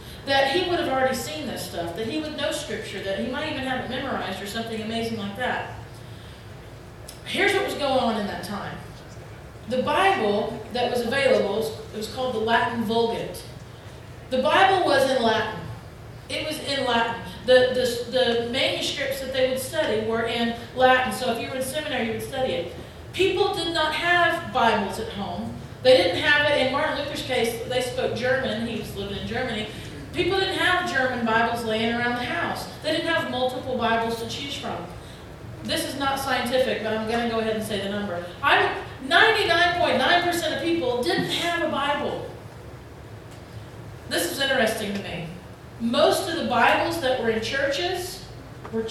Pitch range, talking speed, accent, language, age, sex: 230-305 Hz, 185 wpm, American, English, 40-59, female